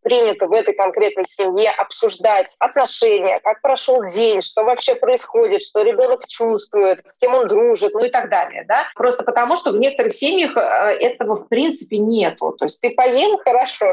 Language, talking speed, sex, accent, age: Russian, 170 wpm, female, native, 20-39